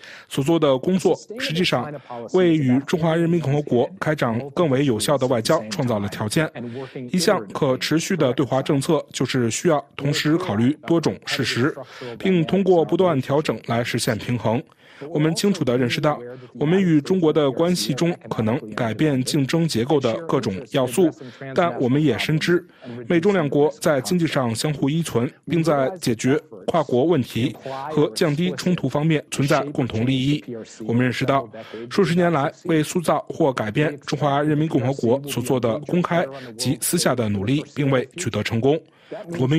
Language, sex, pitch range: Chinese, male, 125-165 Hz